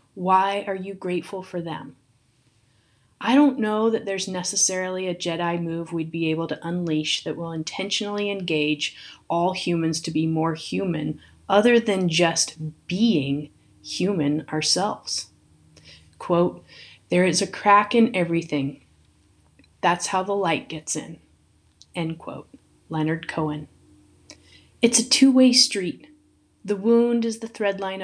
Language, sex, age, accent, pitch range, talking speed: English, female, 30-49, American, 160-205 Hz, 135 wpm